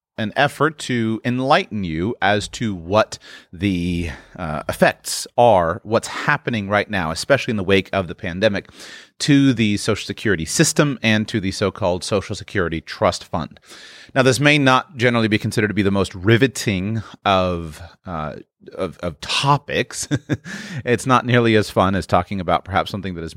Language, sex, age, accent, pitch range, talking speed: English, male, 30-49, American, 95-125 Hz, 165 wpm